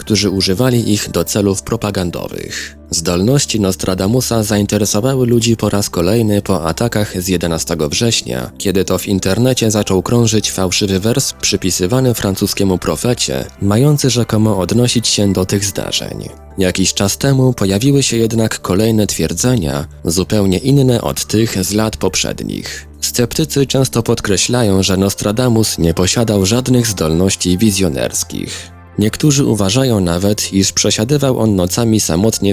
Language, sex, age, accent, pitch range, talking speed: Polish, male, 20-39, native, 90-115 Hz, 125 wpm